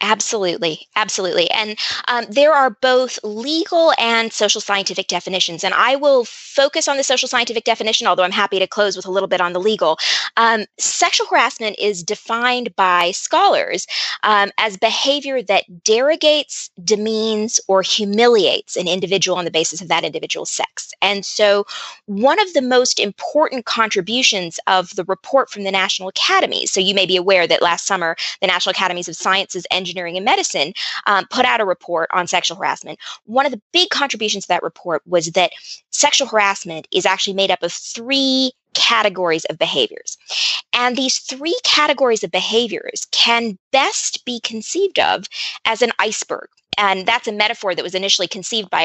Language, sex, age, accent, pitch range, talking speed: English, female, 20-39, American, 185-250 Hz, 175 wpm